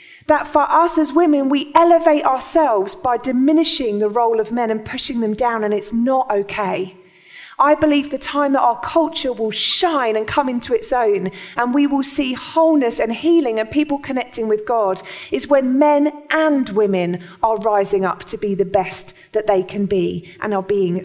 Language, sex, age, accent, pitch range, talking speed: English, female, 30-49, British, 215-295 Hz, 190 wpm